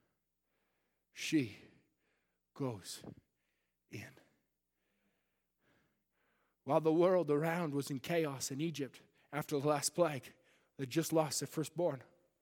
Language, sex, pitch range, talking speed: English, male, 125-170 Hz, 100 wpm